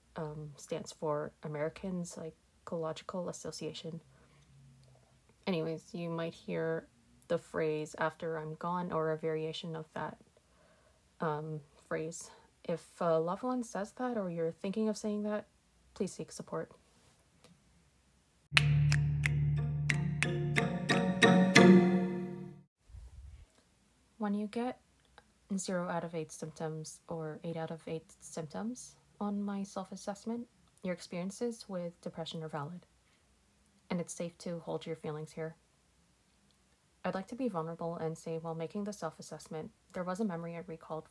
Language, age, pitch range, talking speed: English, 30-49, 155-180 Hz, 125 wpm